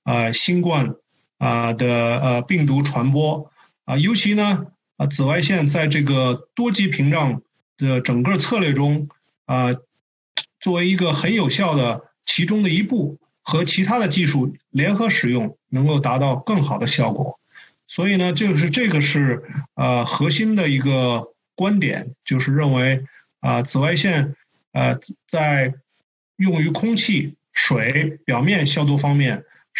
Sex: male